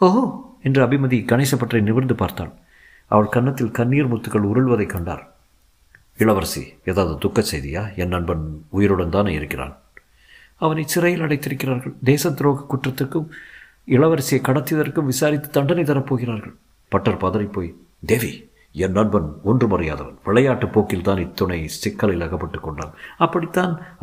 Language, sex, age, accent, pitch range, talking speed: Tamil, male, 50-69, native, 85-135 Hz, 110 wpm